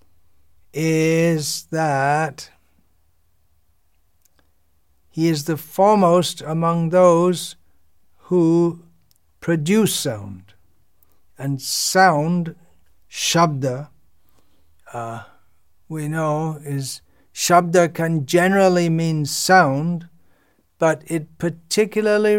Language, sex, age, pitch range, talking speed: English, male, 60-79, 95-160 Hz, 70 wpm